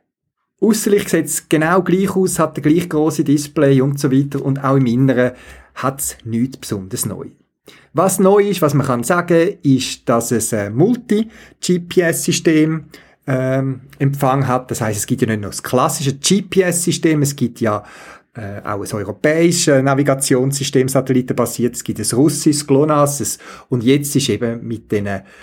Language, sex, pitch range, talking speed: German, male, 115-155 Hz, 160 wpm